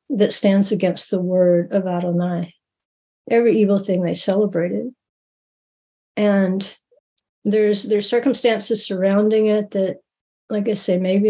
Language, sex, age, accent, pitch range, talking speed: English, female, 50-69, American, 185-220 Hz, 120 wpm